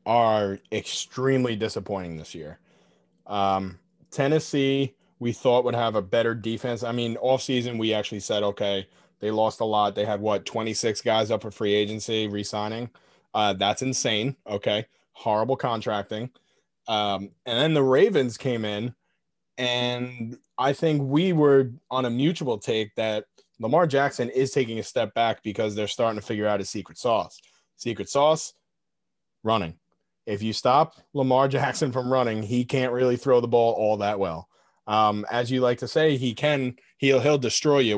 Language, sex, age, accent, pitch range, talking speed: English, male, 30-49, American, 105-125 Hz, 165 wpm